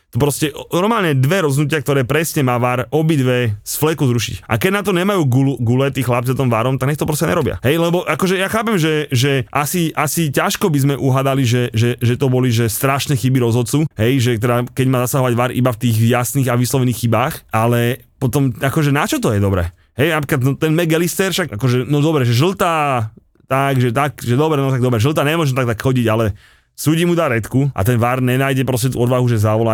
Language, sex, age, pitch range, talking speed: Slovak, male, 30-49, 120-150 Hz, 225 wpm